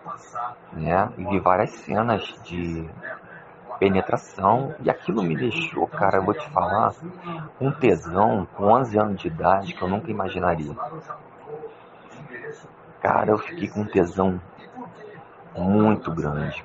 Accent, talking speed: Brazilian, 125 wpm